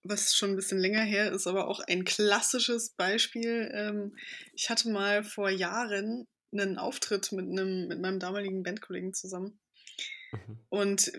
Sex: female